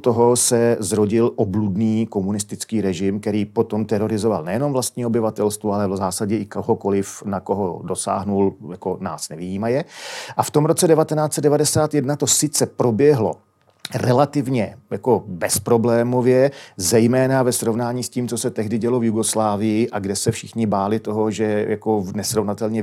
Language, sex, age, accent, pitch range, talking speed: Czech, male, 40-59, native, 100-120 Hz, 145 wpm